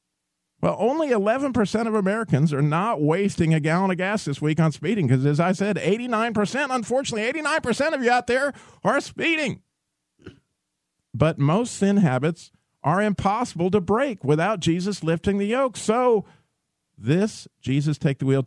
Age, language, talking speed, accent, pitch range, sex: 50-69, English, 155 wpm, American, 125-195 Hz, male